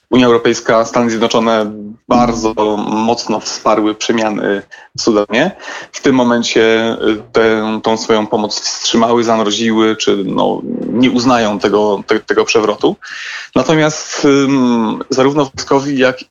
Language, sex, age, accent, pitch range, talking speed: Polish, male, 30-49, native, 110-125 Hz, 120 wpm